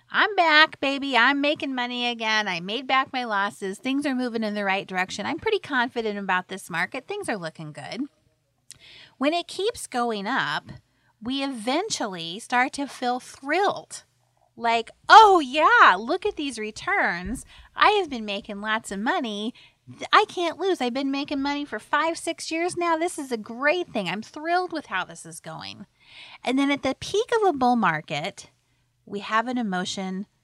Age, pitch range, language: 30-49, 200-295 Hz, English